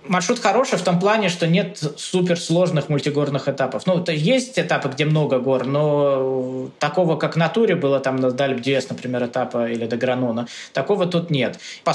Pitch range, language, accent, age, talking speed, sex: 130-165 Hz, Russian, native, 20-39, 175 wpm, male